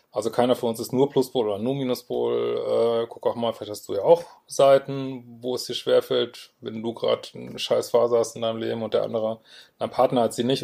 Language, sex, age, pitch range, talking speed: German, male, 20-39, 120-140 Hz, 235 wpm